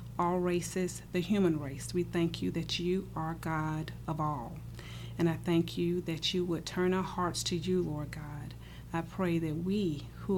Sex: female